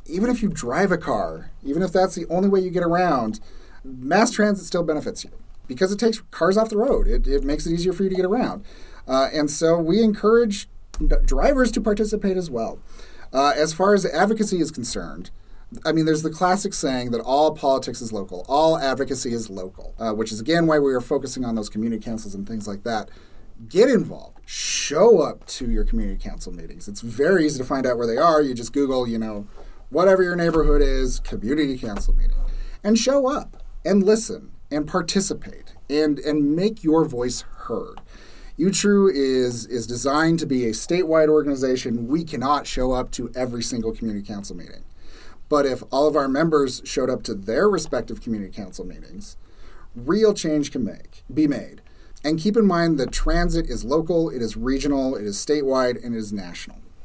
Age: 30-49